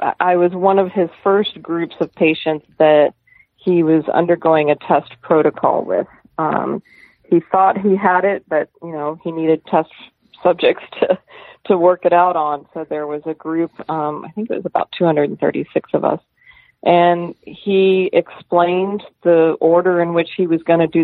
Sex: female